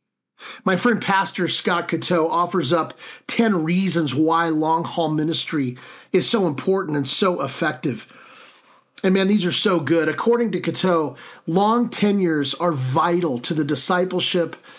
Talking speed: 140 wpm